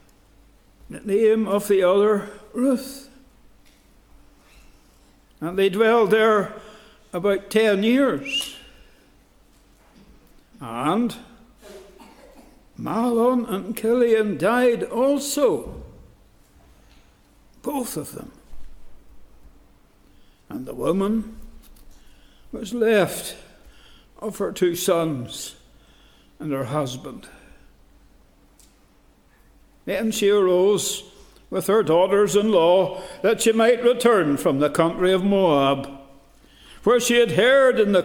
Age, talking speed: 60-79, 90 wpm